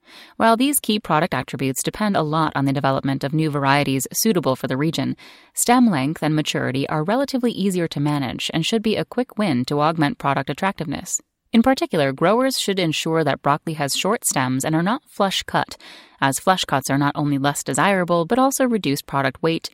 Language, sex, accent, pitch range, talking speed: English, female, American, 140-210 Hz, 190 wpm